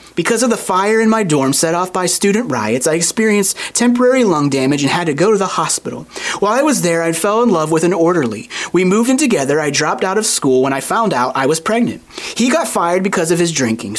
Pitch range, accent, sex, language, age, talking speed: 160-220 Hz, American, male, English, 30-49, 250 wpm